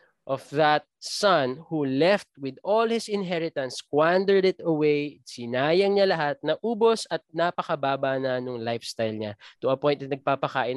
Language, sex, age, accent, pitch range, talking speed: English, male, 20-39, Filipino, 120-160 Hz, 155 wpm